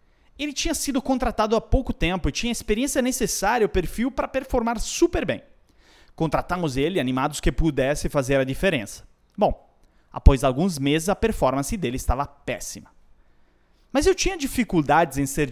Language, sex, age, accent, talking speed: Portuguese, male, 30-49, Brazilian, 160 wpm